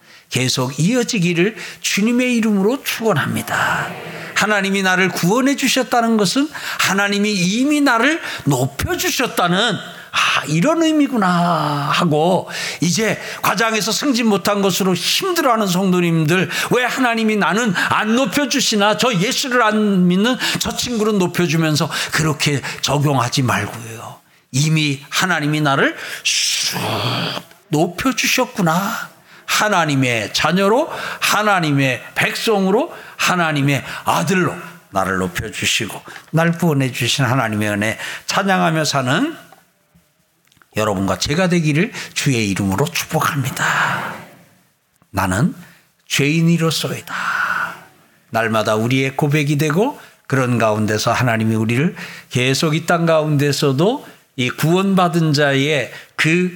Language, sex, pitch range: Korean, male, 140-215 Hz